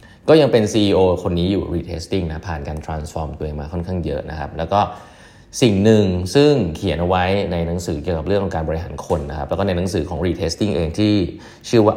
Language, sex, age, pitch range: Thai, male, 20-39, 85-110 Hz